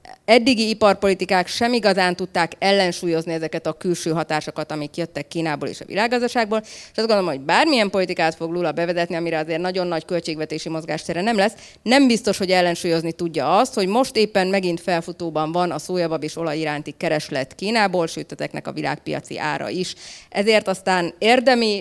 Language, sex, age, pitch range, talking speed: Hungarian, female, 30-49, 165-200 Hz, 165 wpm